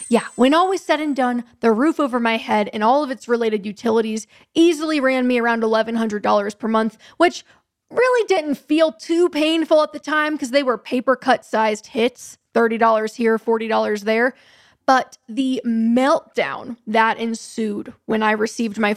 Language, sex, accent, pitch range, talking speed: English, female, American, 215-265 Hz, 170 wpm